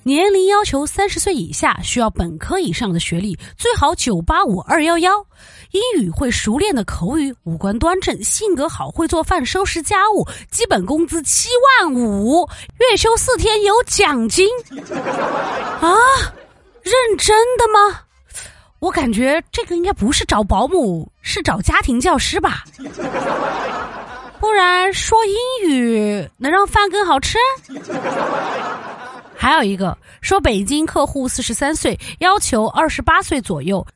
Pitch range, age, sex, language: 280-410 Hz, 30-49, female, Chinese